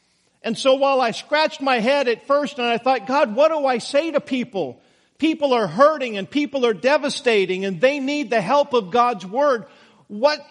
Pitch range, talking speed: 210-255 Hz, 200 wpm